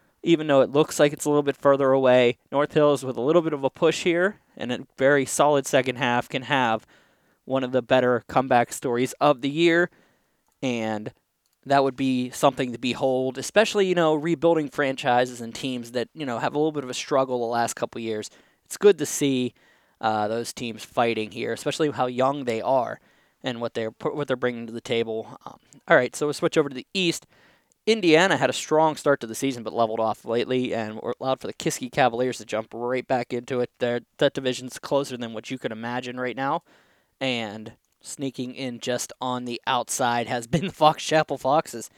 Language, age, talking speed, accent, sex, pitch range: English, 20-39, 210 wpm, American, male, 120-145 Hz